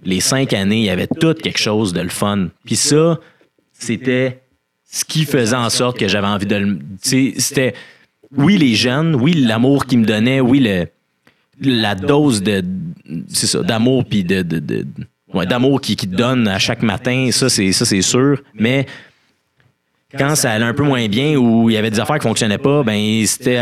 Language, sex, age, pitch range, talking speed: French, male, 30-49, 105-130 Hz, 200 wpm